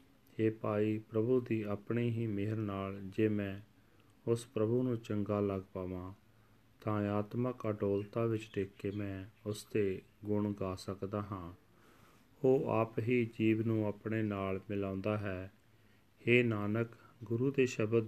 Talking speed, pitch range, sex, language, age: 135 wpm, 105-115 Hz, male, Punjabi, 40-59